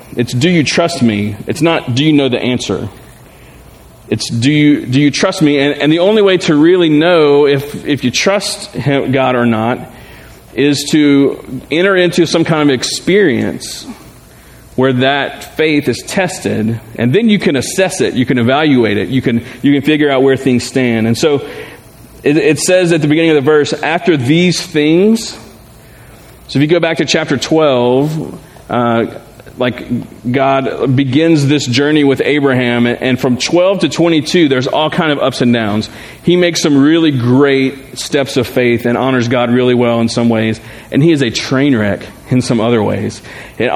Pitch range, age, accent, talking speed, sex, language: 125-160 Hz, 40-59, American, 185 wpm, male, English